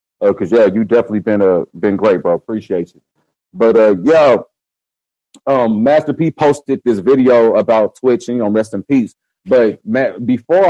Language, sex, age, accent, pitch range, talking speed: English, male, 40-59, American, 120-165 Hz, 175 wpm